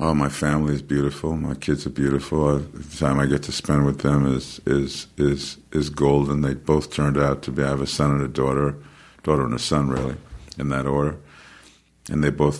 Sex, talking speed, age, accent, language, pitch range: male, 215 wpm, 50-69, American, English, 70-75 Hz